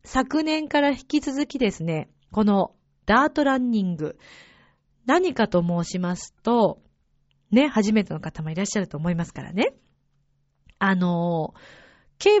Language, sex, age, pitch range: Japanese, female, 40-59, 180-285 Hz